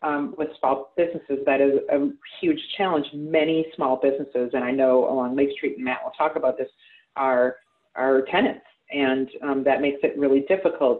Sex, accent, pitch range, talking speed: female, American, 130-155 Hz, 185 wpm